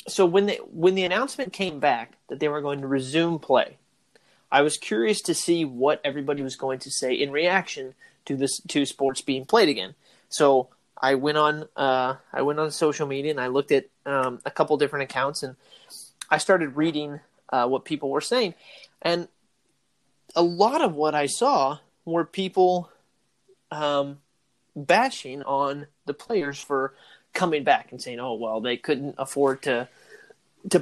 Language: English